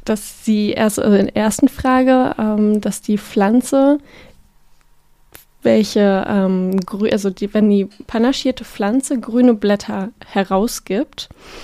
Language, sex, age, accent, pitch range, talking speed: German, female, 20-39, German, 210-255 Hz, 105 wpm